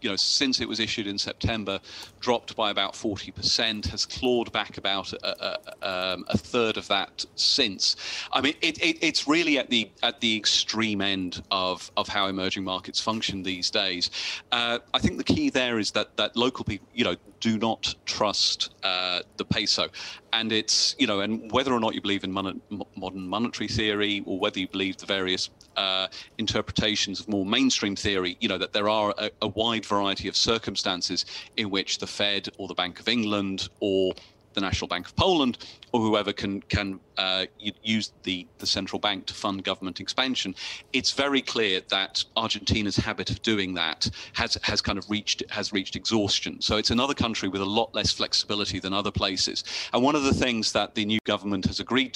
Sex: male